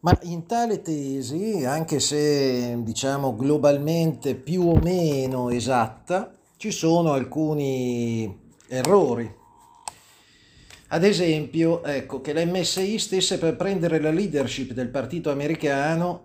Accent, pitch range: native, 135-170 Hz